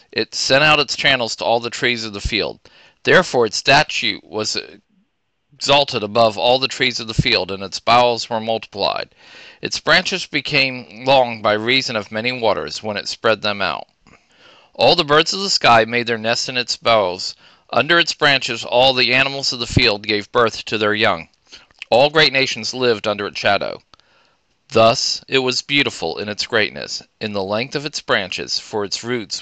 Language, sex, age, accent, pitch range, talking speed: English, male, 40-59, American, 110-140 Hz, 190 wpm